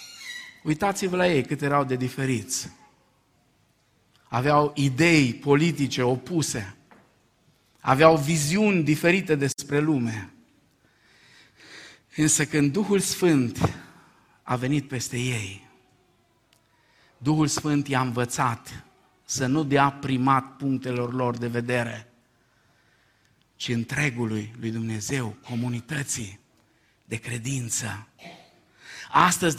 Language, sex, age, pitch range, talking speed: Romanian, male, 50-69, 120-145 Hz, 90 wpm